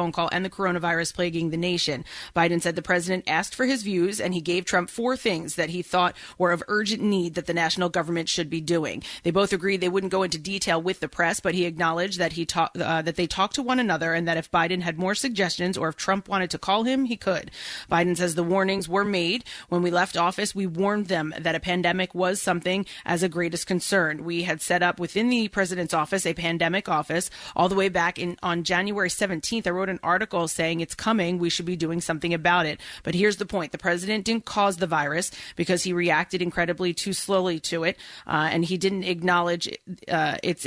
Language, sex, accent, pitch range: English, female, American, 170-190 Hz